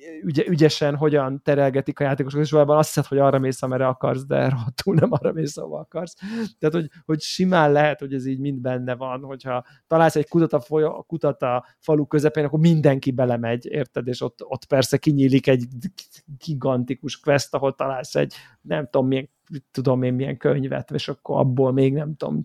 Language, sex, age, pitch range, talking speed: Hungarian, male, 30-49, 135-195 Hz, 180 wpm